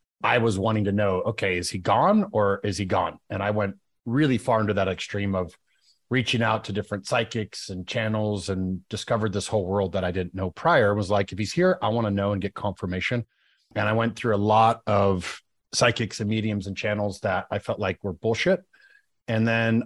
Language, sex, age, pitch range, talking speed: English, male, 30-49, 100-115 Hz, 220 wpm